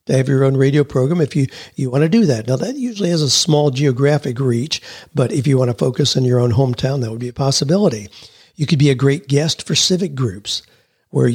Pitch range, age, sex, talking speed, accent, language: 130-155 Hz, 50-69, male, 245 wpm, American, English